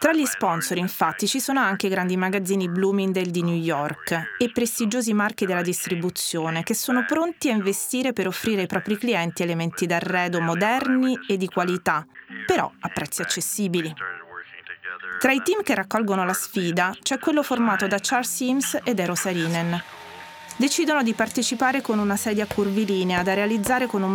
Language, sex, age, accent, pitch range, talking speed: Italian, female, 30-49, native, 180-245 Hz, 165 wpm